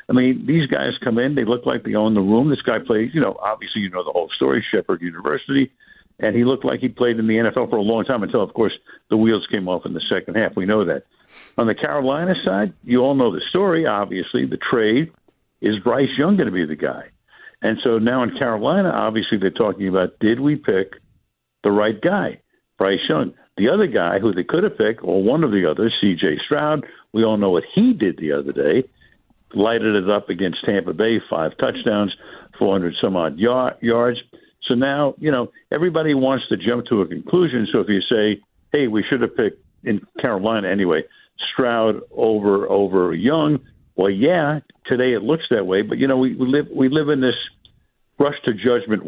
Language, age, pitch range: English, 60-79, 105-140 Hz